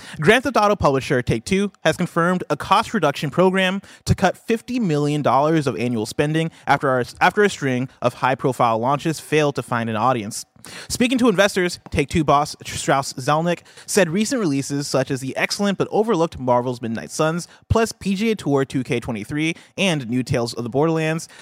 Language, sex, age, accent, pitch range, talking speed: English, male, 30-49, American, 130-175 Hz, 160 wpm